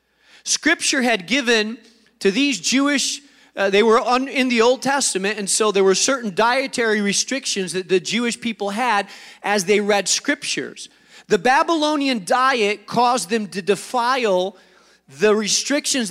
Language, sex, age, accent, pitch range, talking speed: English, male, 40-59, American, 185-245 Hz, 140 wpm